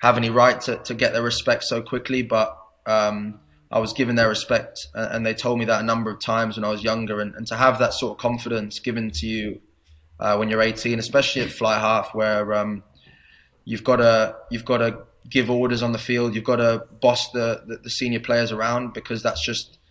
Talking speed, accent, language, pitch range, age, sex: 230 wpm, British, English, 110-120 Hz, 20-39, male